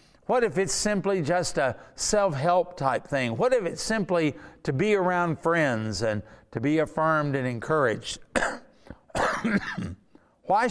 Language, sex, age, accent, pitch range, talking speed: English, male, 50-69, American, 135-195 Hz, 135 wpm